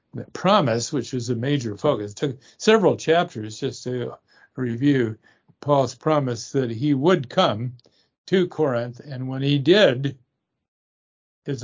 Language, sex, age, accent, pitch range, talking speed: English, male, 50-69, American, 120-155 Hz, 140 wpm